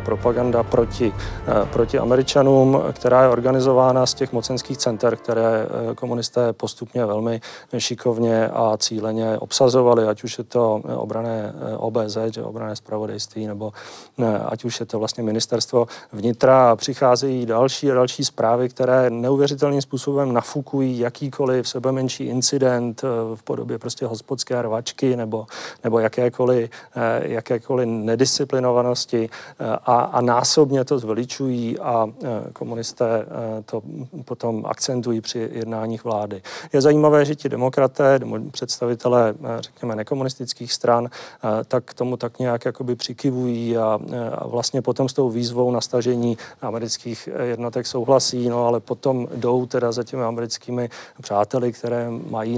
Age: 40-59